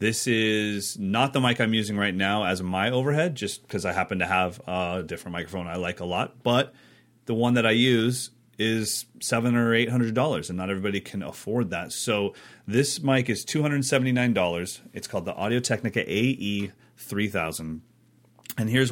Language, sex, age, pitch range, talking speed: English, male, 30-49, 95-125 Hz, 170 wpm